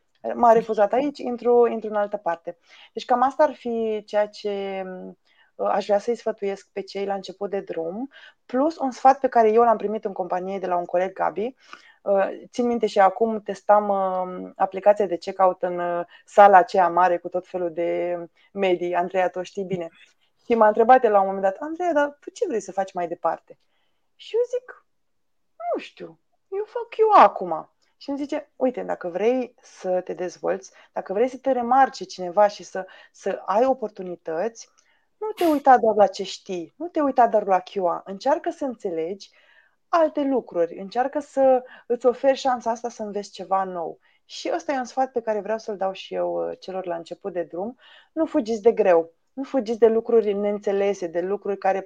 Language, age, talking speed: Romanian, 20-39, 190 wpm